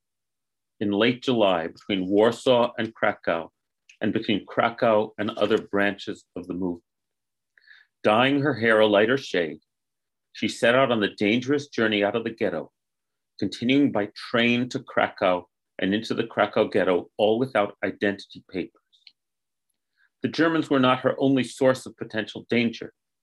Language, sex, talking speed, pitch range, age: English, male, 145 wpm, 105-130 Hz, 40-59